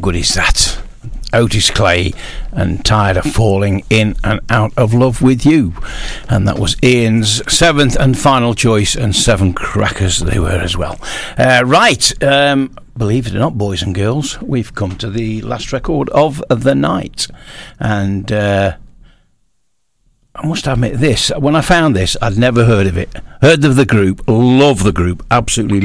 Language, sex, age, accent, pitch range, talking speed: English, male, 60-79, British, 100-125 Hz, 170 wpm